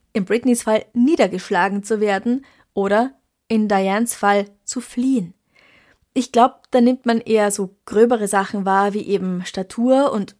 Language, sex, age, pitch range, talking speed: German, female, 20-39, 195-245 Hz, 150 wpm